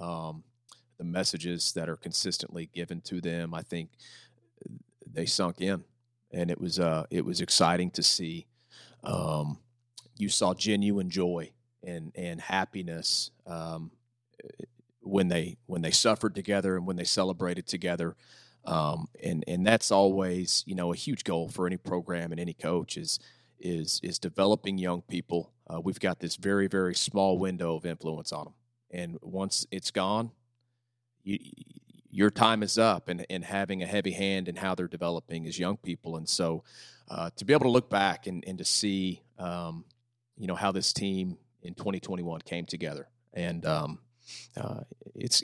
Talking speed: 170 wpm